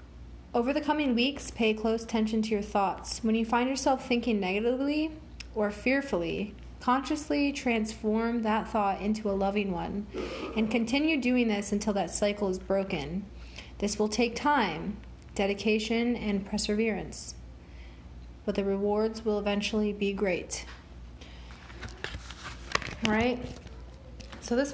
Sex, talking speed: female, 130 wpm